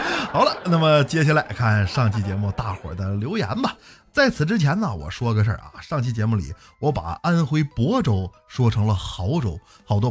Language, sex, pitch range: Chinese, male, 100-150 Hz